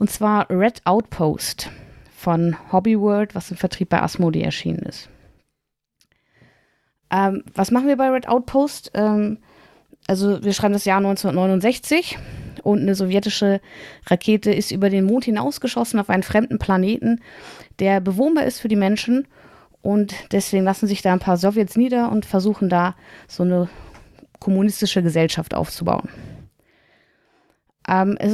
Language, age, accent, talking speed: German, 20-39, German, 140 wpm